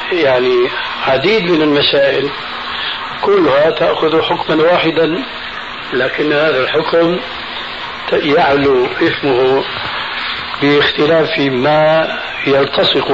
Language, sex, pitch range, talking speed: Arabic, male, 140-175 Hz, 75 wpm